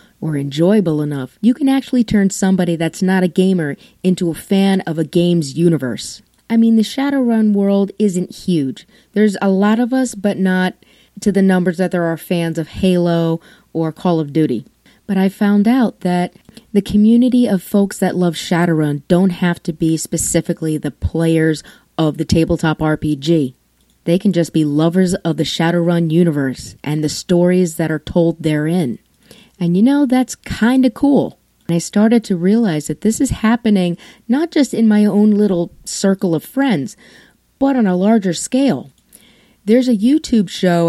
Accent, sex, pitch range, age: American, female, 165-220 Hz, 30-49